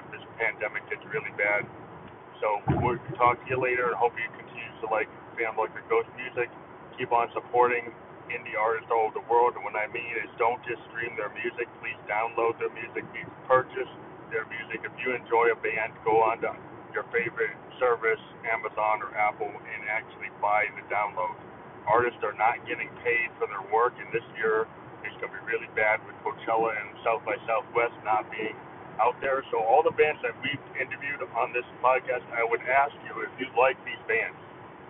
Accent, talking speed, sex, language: American, 195 wpm, male, English